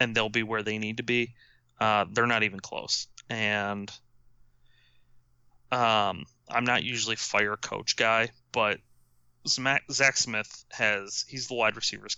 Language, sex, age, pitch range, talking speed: English, male, 20-39, 105-120 Hz, 145 wpm